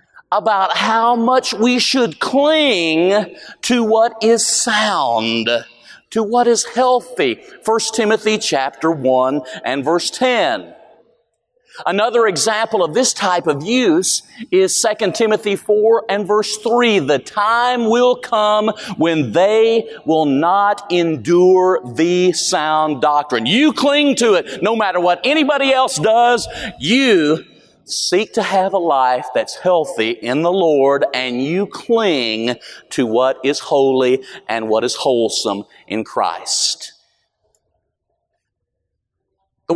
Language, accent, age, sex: English, American, 40-59, male